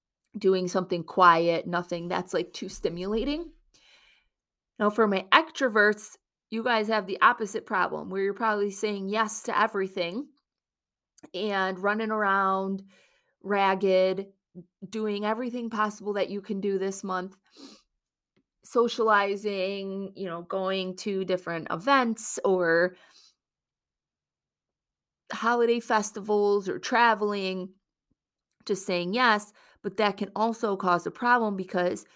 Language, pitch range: English, 185-215 Hz